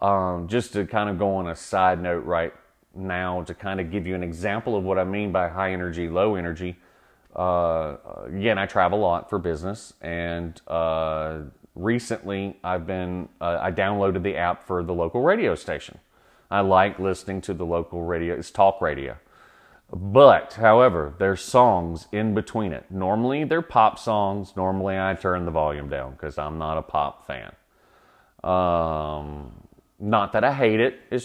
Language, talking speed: English, 175 wpm